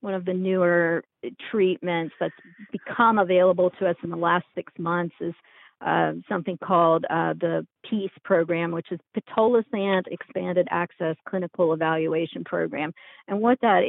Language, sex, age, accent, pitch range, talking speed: English, female, 40-59, American, 170-195 Hz, 145 wpm